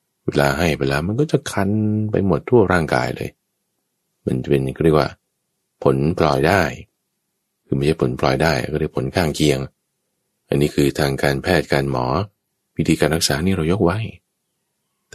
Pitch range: 70-110 Hz